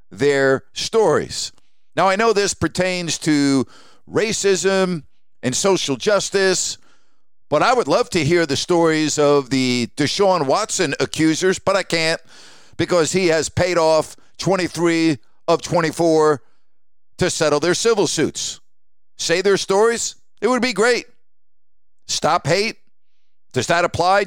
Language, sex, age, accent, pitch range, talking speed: English, male, 50-69, American, 150-195 Hz, 130 wpm